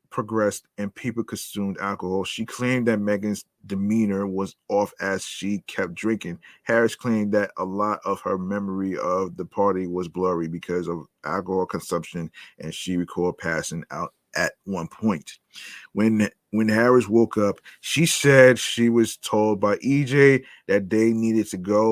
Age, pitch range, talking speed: 30-49, 95-110 Hz, 160 wpm